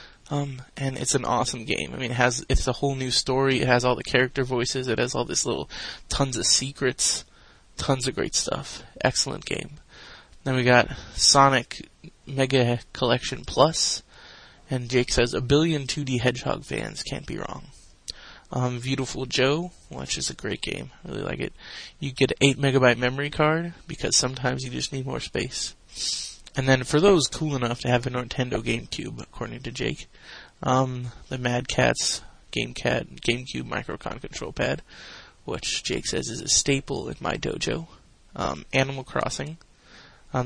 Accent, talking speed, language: American, 170 wpm, English